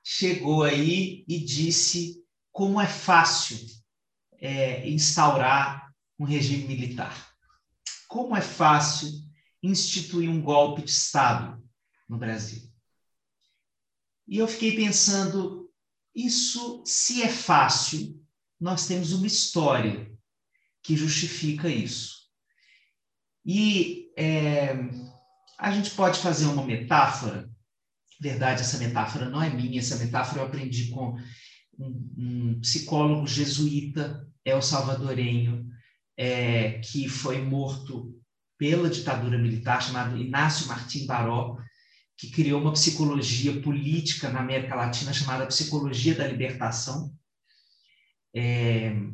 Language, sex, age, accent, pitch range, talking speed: Portuguese, male, 40-59, Brazilian, 125-160 Hz, 105 wpm